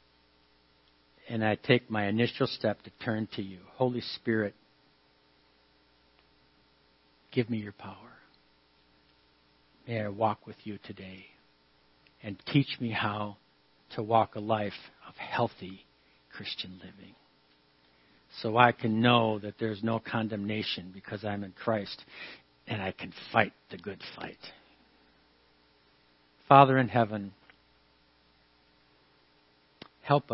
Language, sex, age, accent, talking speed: English, male, 60-79, American, 115 wpm